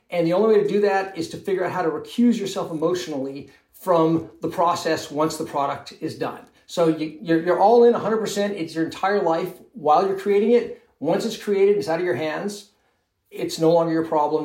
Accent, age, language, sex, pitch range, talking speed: American, 40-59, English, male, 155-195 Hz, 210 wpm